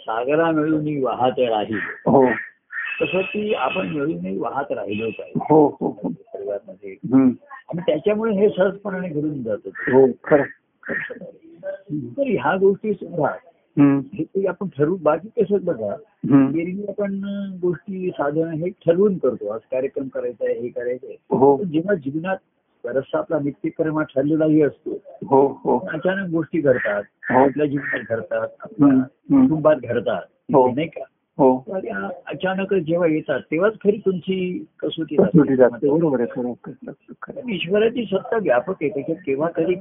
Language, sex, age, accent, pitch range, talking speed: Marathi, male, 50-69, native, 145-205 Hz, 110 wpm